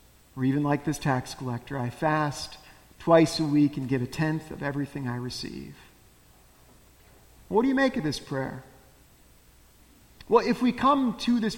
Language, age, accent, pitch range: English, 50-69, American, 140-195 Hz